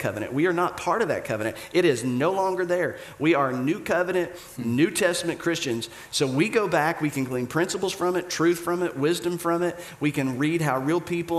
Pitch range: 120-150 Hz